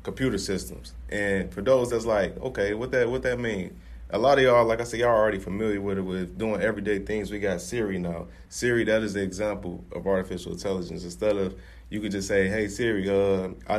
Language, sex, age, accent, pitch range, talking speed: English, male, 20-39, American, 90-115 Hz, 225 wpm